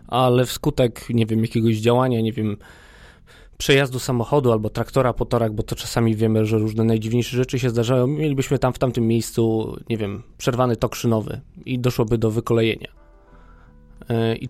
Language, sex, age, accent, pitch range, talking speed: Polish, male, 20-39, native, 115-135 Hz, 155 wpm